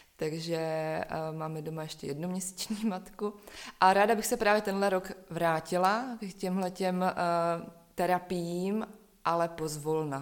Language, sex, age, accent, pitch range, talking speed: Czech, female, 20-39, native, 155-175 Hz, 115 wpm